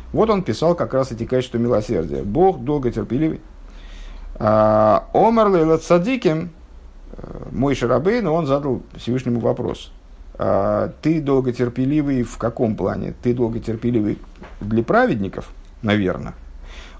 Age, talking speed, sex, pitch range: 50-69, 110 wpm, male, 105-165 Hz